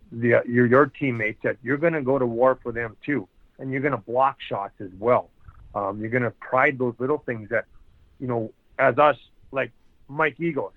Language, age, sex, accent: English, 40-59, male, American